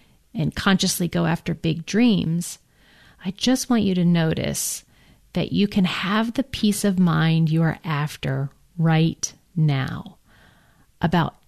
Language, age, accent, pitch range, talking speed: English, 40-59, American, 155-195 Hz, 135 wpm